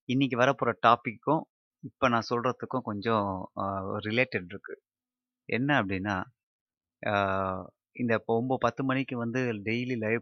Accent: native